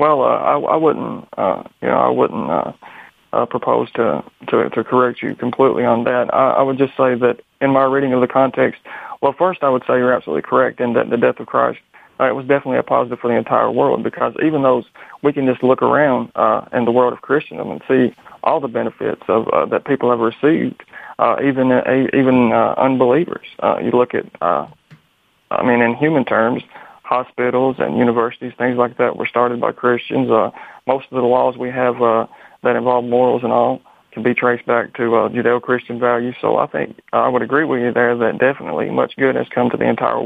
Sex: male